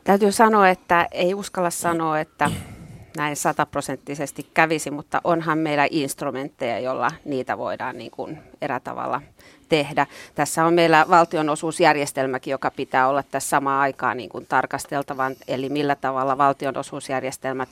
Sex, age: female, 30-49